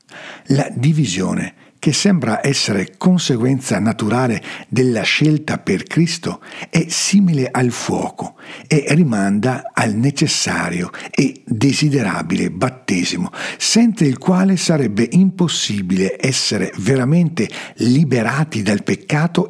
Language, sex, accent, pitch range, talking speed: Italian, male, native, 115-175 Hz, 100 wpm